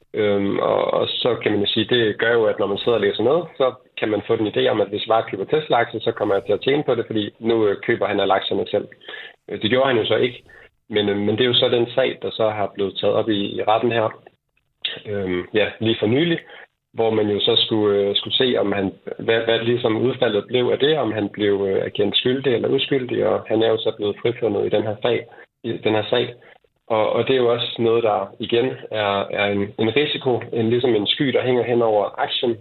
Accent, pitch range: native, 100-120 Hz